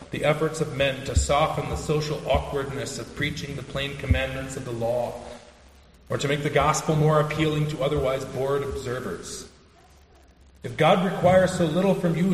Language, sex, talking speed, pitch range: English, male, 170 wpm, 100-155 Hz